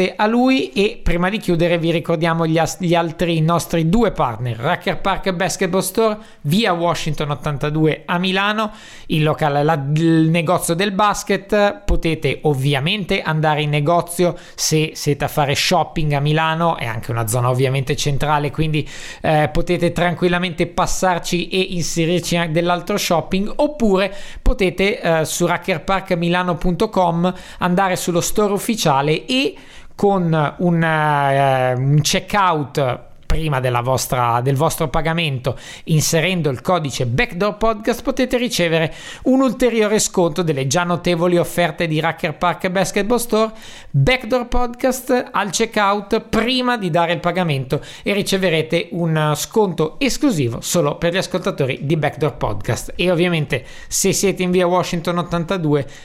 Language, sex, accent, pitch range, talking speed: Italian, male, native, 155-190 Hz, 130 wpm